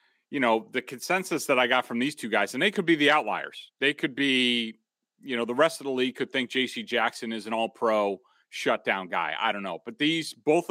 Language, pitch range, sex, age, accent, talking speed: English, 110-140 Hz, male, 30-49, American, 240 wpm